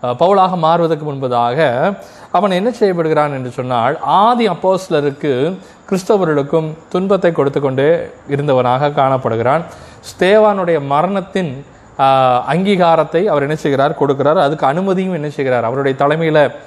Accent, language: native, Tamil